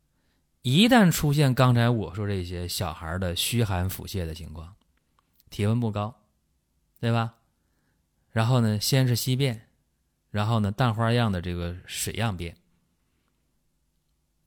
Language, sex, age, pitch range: Chinese, male, 20-39, 95-135 Hz